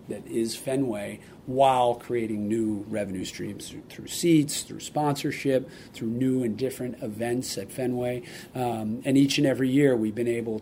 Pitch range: 115-130 Hz